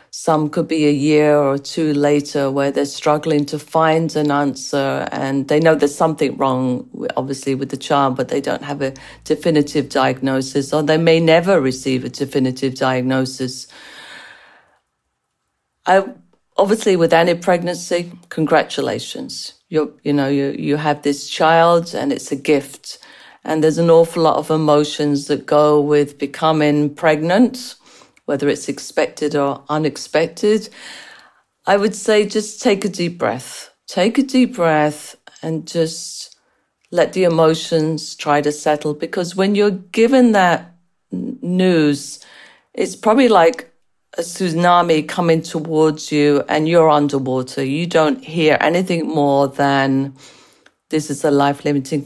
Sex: female